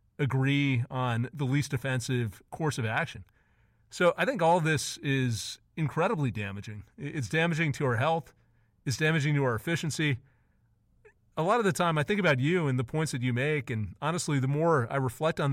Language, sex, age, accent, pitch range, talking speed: English, male, 30-49, American, 125-160 Hz, 190 wpm